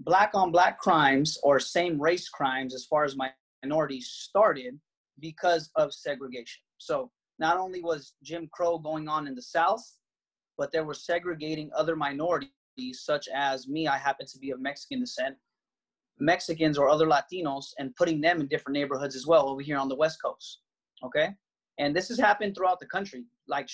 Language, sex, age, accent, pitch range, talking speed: English, male, 30-49, American, 140-170 Hz, 170 wpm